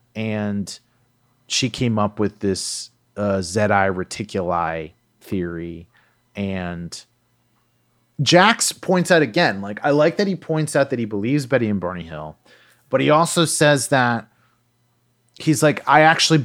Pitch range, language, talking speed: 105-140 Hz, English, 140 wpm